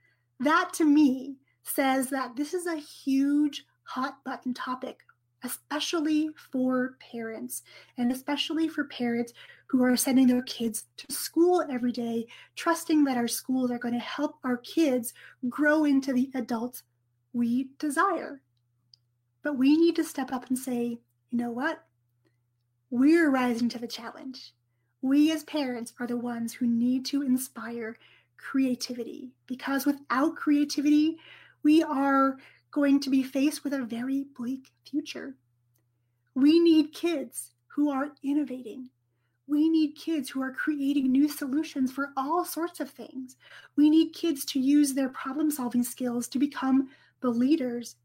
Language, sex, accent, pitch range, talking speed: English, female, American, 240-295 Hz, 145 wpm